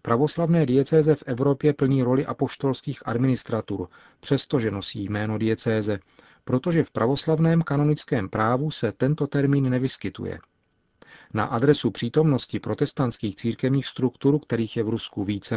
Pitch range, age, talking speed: 110-140 Hz, 40-59, 125 wpm